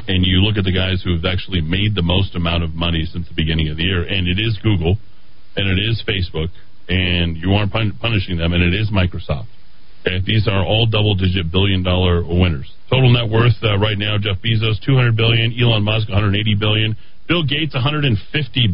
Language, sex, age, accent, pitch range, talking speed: English, male, 40-59, American, 90-115 Hz, 200 wpm